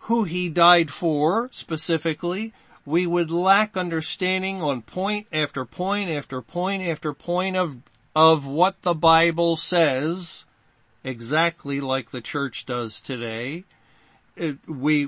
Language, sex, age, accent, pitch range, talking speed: English, male, 50-69, American, 150-185 Hz, 120 wpm